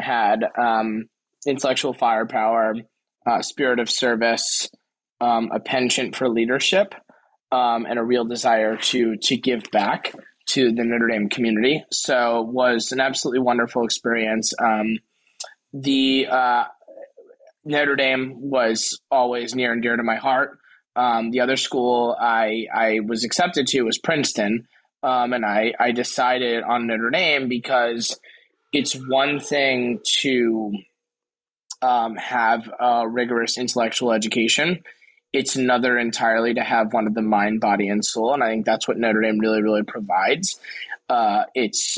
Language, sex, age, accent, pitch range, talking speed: English, male, 20-39, American, 115-130 Hz, 145 wpm